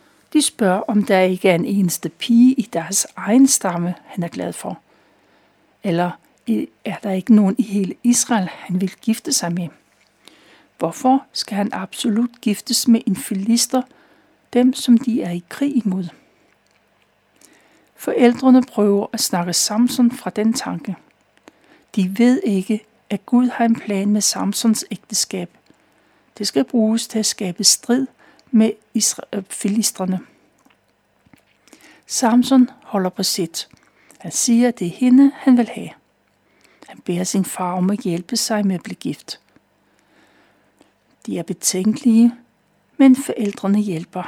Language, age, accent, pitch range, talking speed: Danish, 60-79, native, 195-245 Hz, 140 wpm